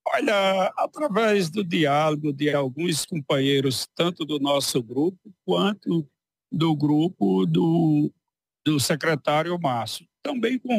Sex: male